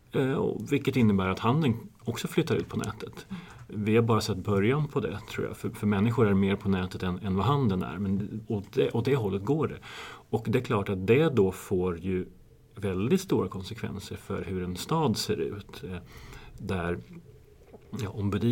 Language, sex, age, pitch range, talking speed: Swedish, male, 30-49, 100-115 Hz, 185 wpm